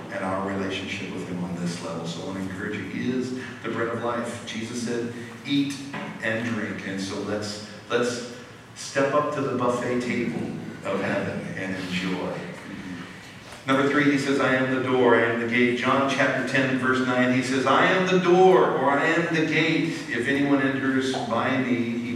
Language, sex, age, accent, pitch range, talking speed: English, male, 50-69, American, 115-140 Hz, 200 wpm